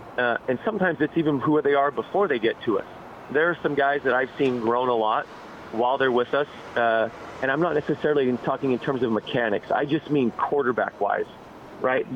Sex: male